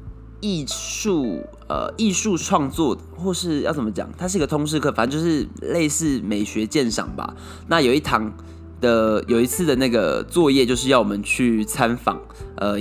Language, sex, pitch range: Chinese, male, 100-130 Hz